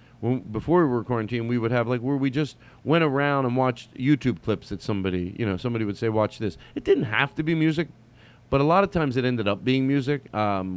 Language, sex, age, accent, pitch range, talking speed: English, male, 40-59, American, 100-120 Hz, 240 wpm